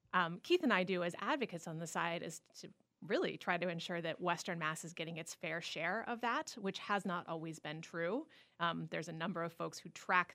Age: 30-49